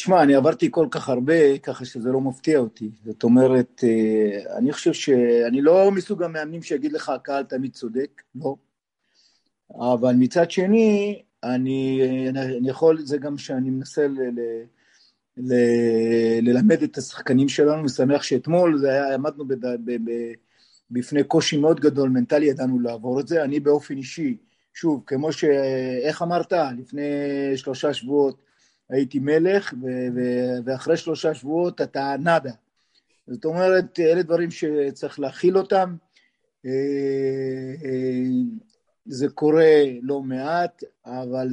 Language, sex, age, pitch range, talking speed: Hebrew, male, 50-69, 130-160 Hz, 130 wpm